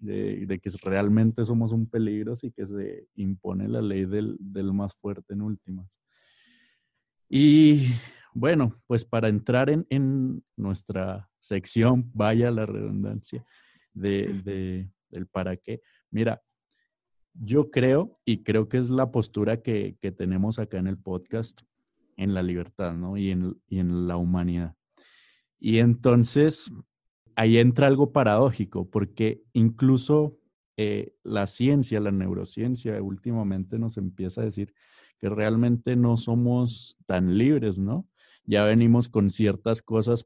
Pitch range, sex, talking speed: 95-115 Hz, male, 135 wpm